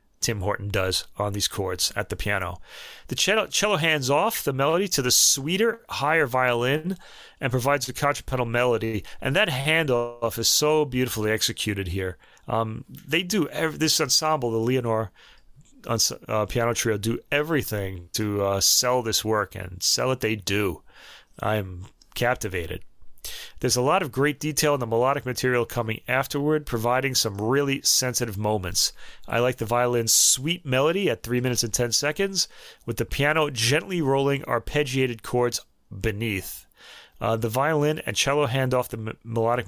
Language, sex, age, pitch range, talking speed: English, male, 30-49, 110-145 Hz, 155 wpm